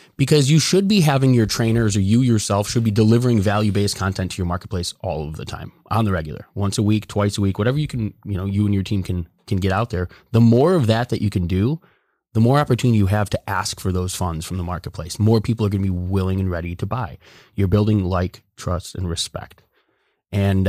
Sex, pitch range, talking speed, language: male, 95-120 Hz, 245 wpm, English